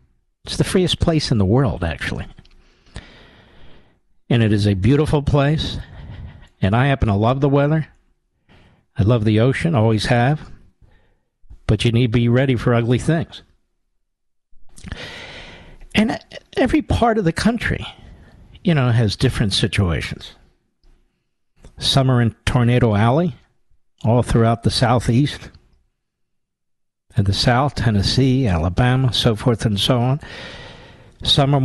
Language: English